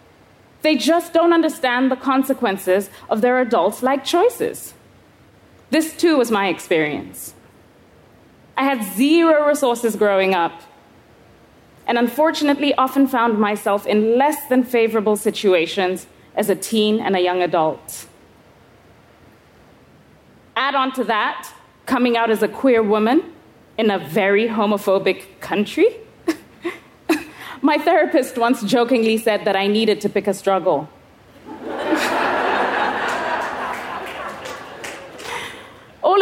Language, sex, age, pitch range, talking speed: English, female, 30-49, 215-310 Hz, 110 wpm